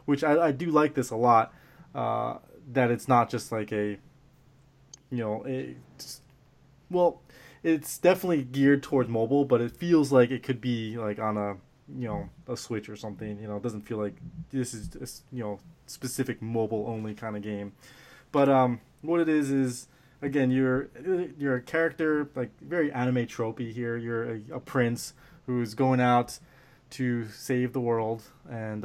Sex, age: male, 20-39